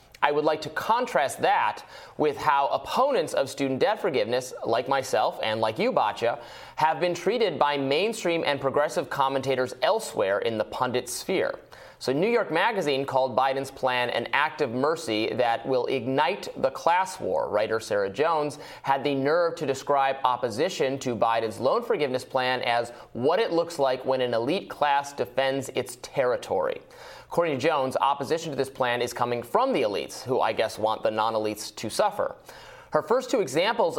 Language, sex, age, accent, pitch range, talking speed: English, male, 30-49, American, 130-165 Hz, 175 wpm